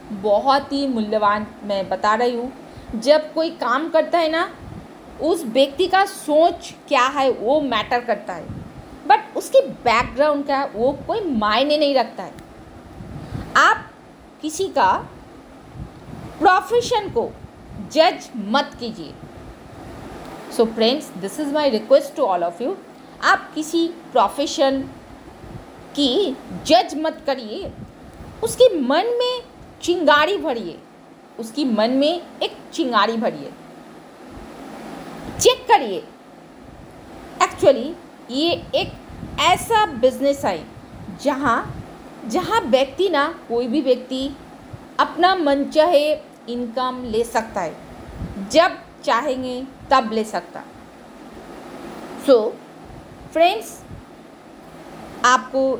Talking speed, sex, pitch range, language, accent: 110 wpm, female, 240-330 Hz, Hindi, native